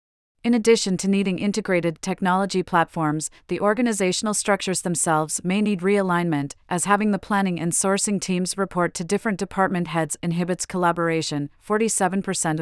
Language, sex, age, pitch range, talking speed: English, female, 30-49, 170-200 Hz, 140 wpm